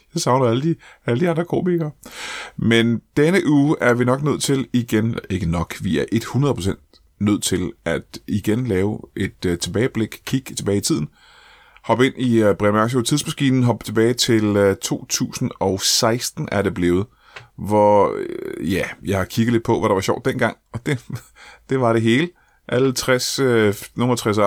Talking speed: 165 wpm